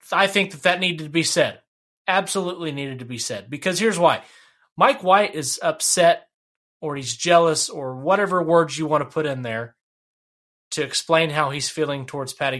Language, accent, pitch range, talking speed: English, American, 130-175 Hz, 185 wpm